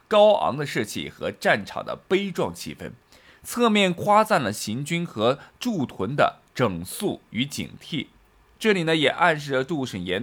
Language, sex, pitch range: Chinese, male, 125-210 Hz